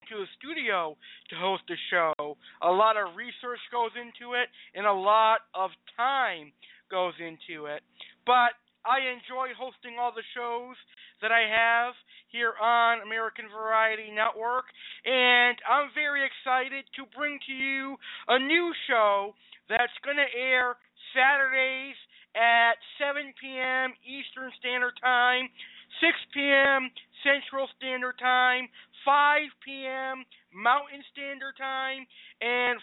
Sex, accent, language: male, American, English